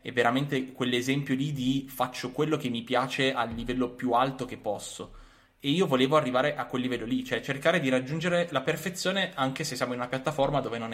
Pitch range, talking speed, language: 115-130 Hz, 210 wpm, Italian